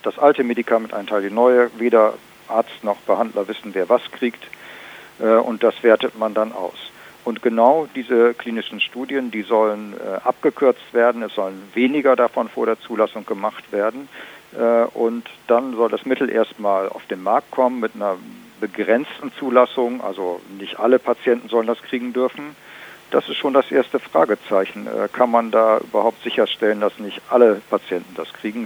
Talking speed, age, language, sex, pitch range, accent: 165 wpm, 50-69, German, male, 110-125 Hz, German